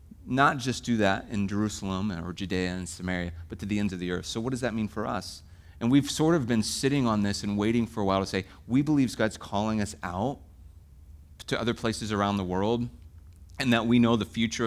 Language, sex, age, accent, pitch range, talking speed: English, male, 30-49, American, 90-115 Hz, 235 wpm